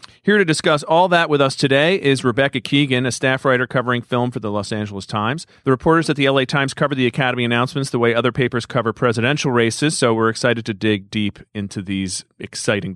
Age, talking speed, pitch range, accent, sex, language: 40-59, 220 wpm, 115-155 Hz, American, male, English